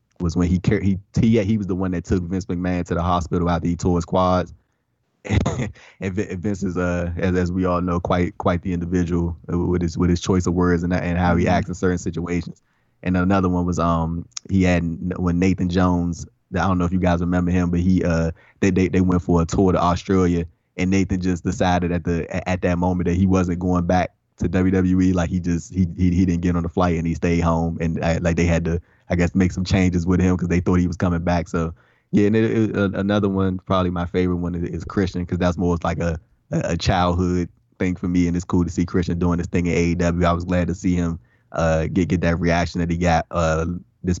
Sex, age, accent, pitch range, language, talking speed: male, 20-39, American, 85-95 Hz, English, 245 wpm